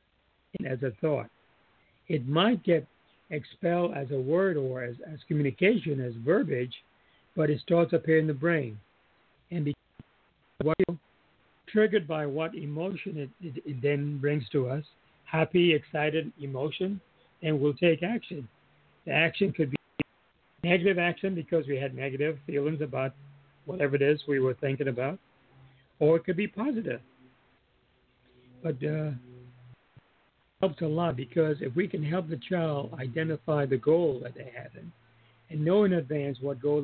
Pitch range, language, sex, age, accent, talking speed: 135-170 Hz, English, male, 60-79, American, 150 wpm